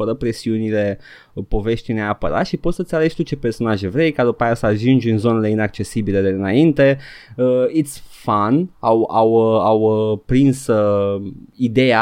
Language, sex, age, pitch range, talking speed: Romanian, male, 20-39, 110-140 Hz, 165 wpm